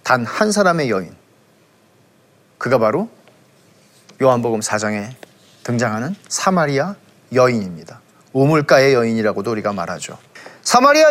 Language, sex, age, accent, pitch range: Korean, male, 40-59, native, 135-215 Hz